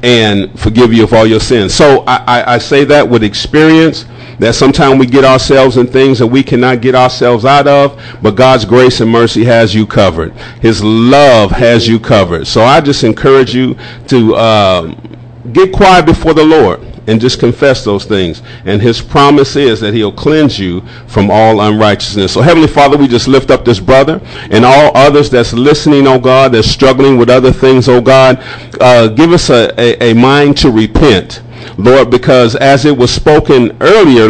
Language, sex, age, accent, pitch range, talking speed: English, male, 50-69, American, 120-150 Hz, 190 wpm